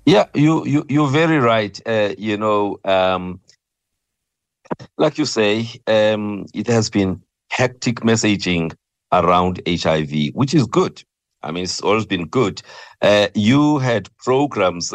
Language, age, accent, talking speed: English, 60-79, South African, 135 wpm